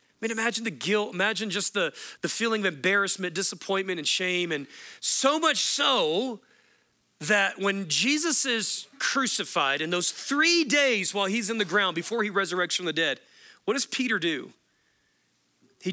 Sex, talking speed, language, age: male, 165 wpm, English, 40-59